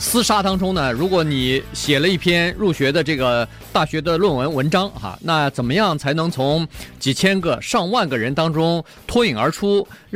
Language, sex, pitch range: Chinese, male, 125-180 Hz